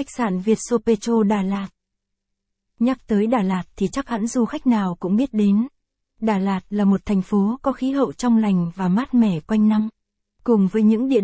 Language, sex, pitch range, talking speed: Vietnamese, female, 200-240 Hz, 210 wpm